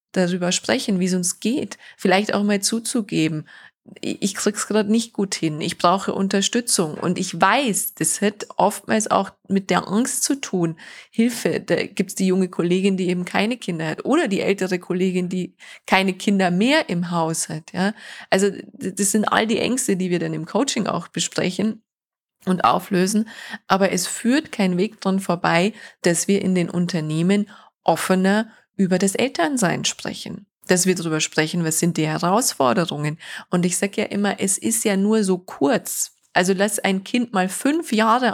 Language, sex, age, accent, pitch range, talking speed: German, female, 20-39, German, 180-215 Hz, 180 wpm